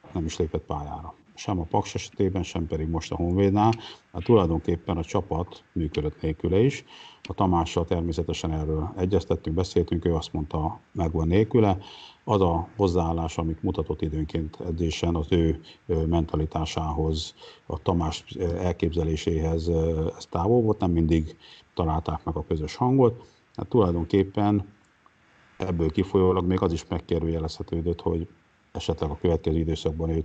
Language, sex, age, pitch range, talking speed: Hungarian, male, 50-69, 80-95 Hz, 135 wpm